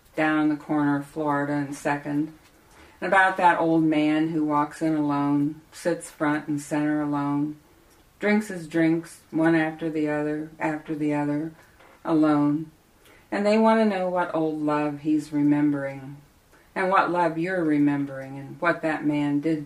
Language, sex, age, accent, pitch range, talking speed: English, female, 50-69, American, 145-160 Hz, 160 wpm